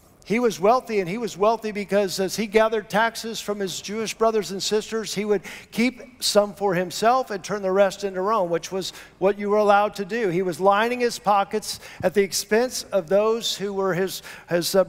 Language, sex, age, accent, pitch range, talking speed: English, male, 50-69, American, 170-210 Hz, 215 wpm